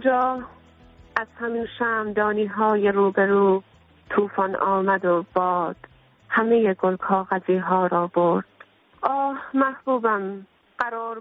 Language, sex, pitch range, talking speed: Persian, female, 195-235 Hz, 105 wpm